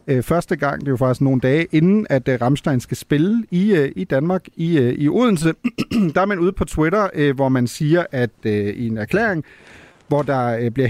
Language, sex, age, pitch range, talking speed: Danish, male, 40-59, 130-175 Hz, 195 wpm